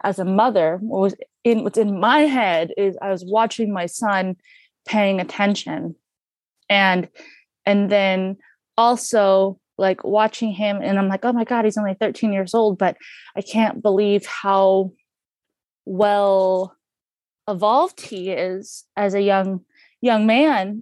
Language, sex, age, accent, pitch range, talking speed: English, female, 20-39, American, 190-220 Hz, 145 wpm